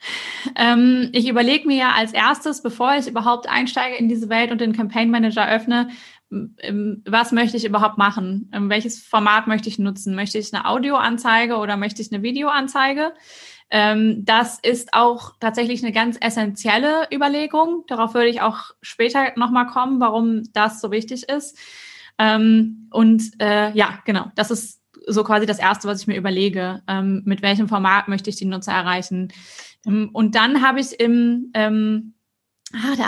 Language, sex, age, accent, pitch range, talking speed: German, female, 20-39, German, 210-245 Hz, 155 wpm